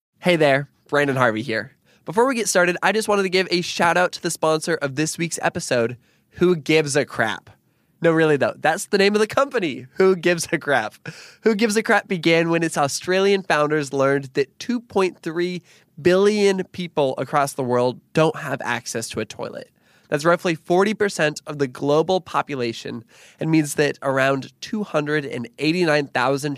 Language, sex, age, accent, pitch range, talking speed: English, male, 20-39, American, 130-175 Hz, 170 wpm